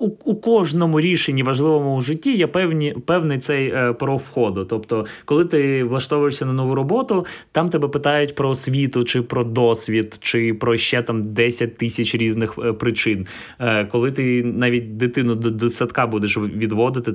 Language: Ukrainian